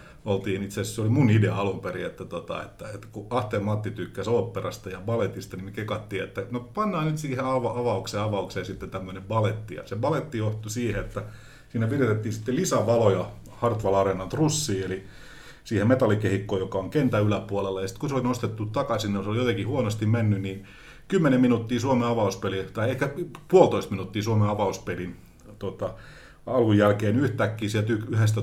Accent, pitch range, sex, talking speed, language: native, 100-120 Hz, male, 165 wpm, Finnish